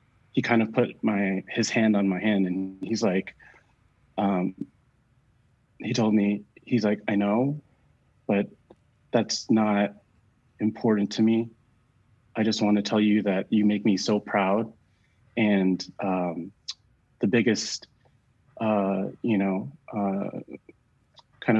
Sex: male